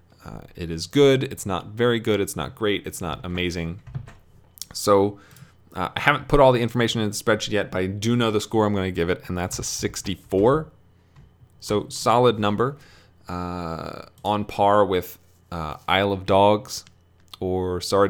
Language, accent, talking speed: English, American, 180 wpm